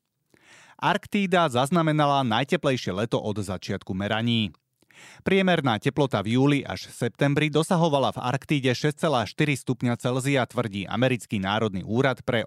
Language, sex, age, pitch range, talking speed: Slovak, male, 30-49, 110-145 Hz, 105 wpm